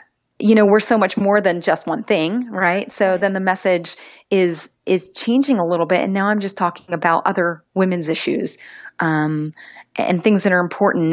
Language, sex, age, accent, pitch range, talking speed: English, female, 30-49, American, 180-230 Hz, 195 wpm